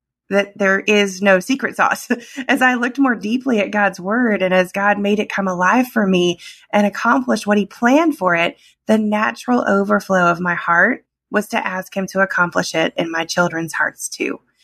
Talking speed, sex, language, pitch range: 195 wpm, female, English, 180-220 Hz